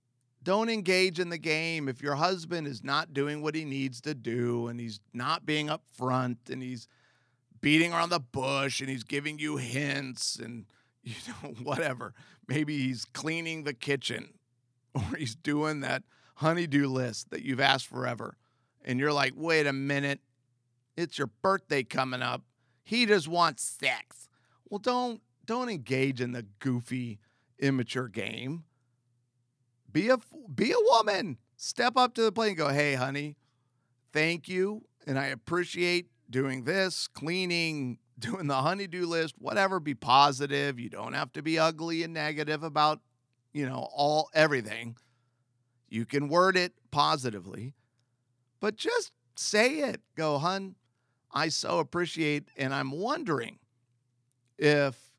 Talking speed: 150 wpm